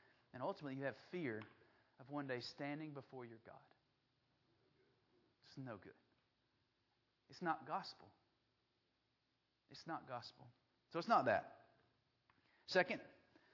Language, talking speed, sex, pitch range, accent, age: English, 115 wpm, male, 130-210 Hz, American, 30-49